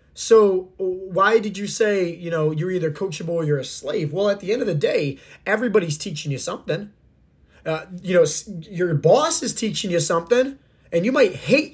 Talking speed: 195 wpm